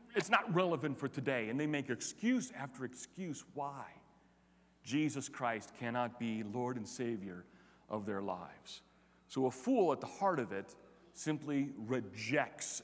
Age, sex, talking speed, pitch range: 40-59, male, 150 wpm, 115-160 Hz